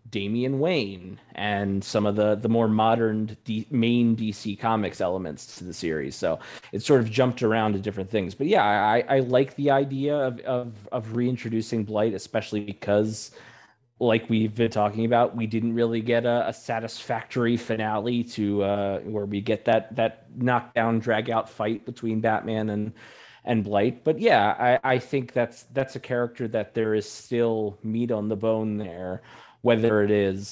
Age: 30-49